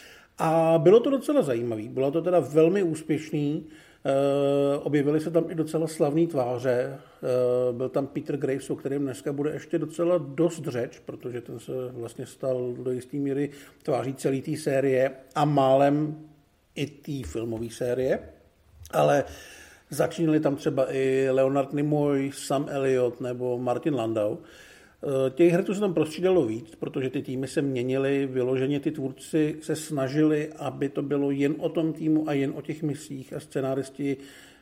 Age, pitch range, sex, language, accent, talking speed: 50-69, 130-155 Hz, male, Czech, native, 160 wpm